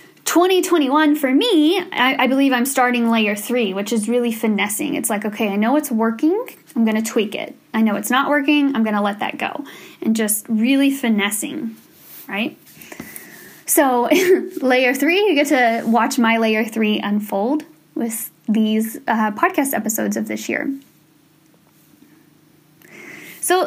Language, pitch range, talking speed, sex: English, 225-300 Hz, 155 wpm, female